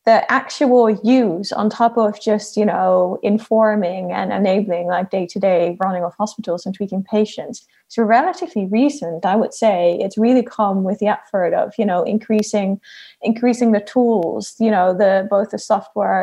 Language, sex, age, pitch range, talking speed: English, female, 20-39, 195-225 Hz, 165 wpm